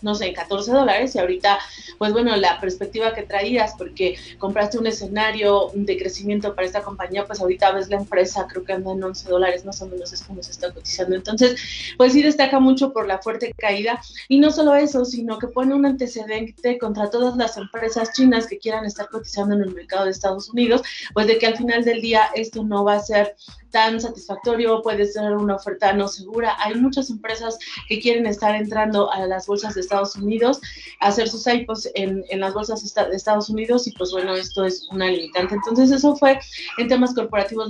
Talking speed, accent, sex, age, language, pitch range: 210 wpm, Colombian, female, 30-49, Spanish, 200-240 Hz